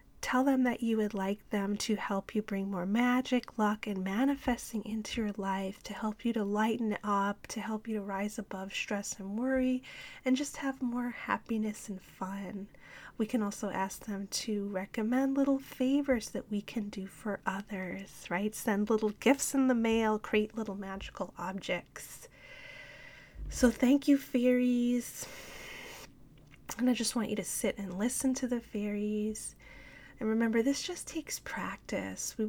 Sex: female